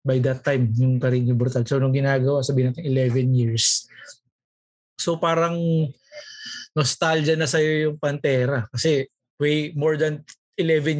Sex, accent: male, native